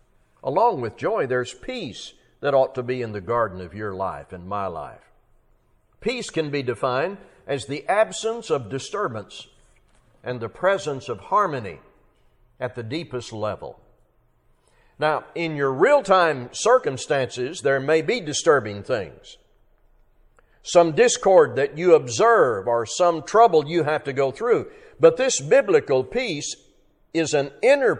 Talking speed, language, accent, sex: 140 wpm, English, American, male